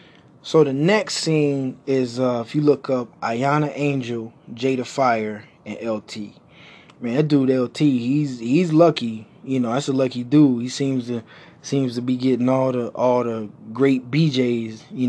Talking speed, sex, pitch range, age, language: 170 wpm, male, 120-145 Hz, 20-39, English